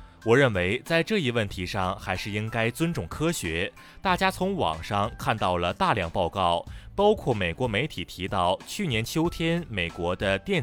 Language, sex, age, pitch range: Chinese, male, 30-49, 95-150 Hz